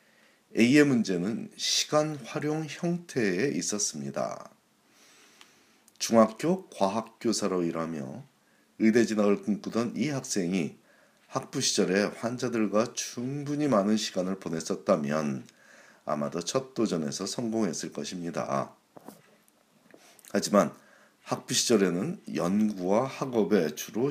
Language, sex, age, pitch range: Korean, male, 40-59, 90-120 Hz